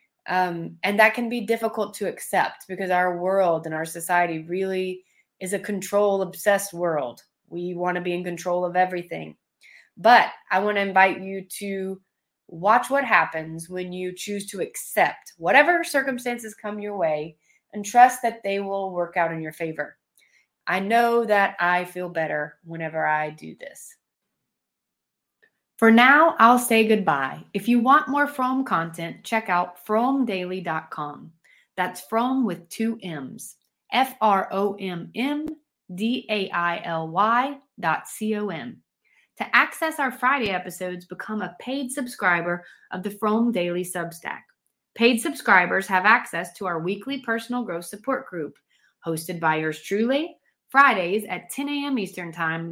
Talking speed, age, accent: 140 wpm, 30-49, American